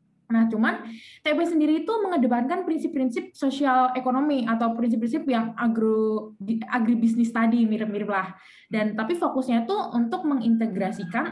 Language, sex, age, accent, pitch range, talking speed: Indonesian, female, 20-39, native, 220-275 Hz, 120 wpm